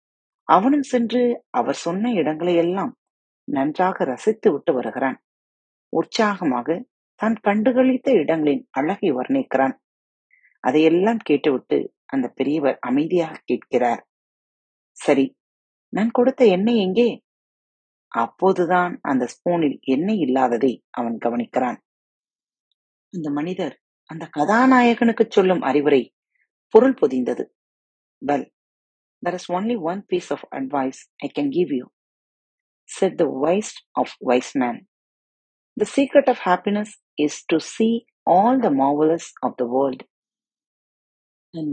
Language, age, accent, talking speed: Tamil, 30-49, native, 100 wpm